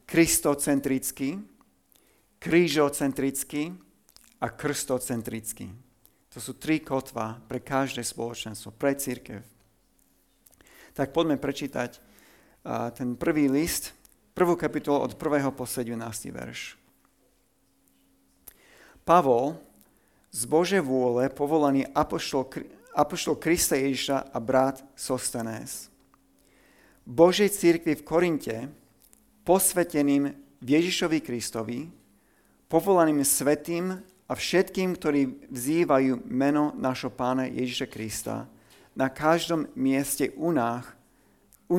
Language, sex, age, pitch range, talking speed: Slovak, male, 50-69, 120-155 Hz, 90 wpm